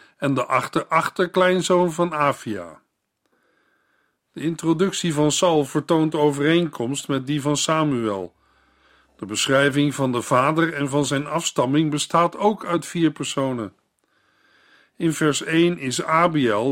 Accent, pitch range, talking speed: Dutch, 130-165 Hz, 125 wpm